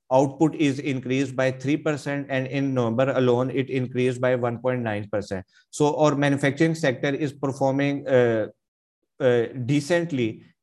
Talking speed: 125 wpm